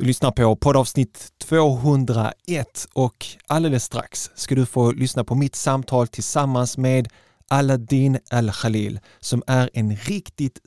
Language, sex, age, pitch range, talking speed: Swedish, male, 30-49, 115-135 Hz, 130 wpm